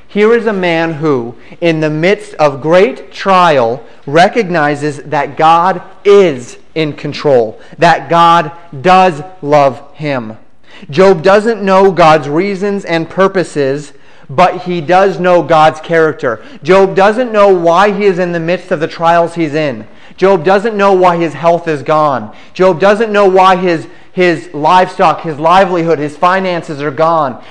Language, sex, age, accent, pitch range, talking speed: English, male, 30-49, American, 155-185 Hz, 155 wpm